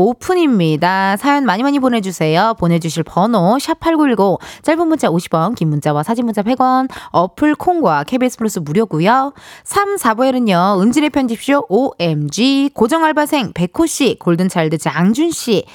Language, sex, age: Korean, female, 20-39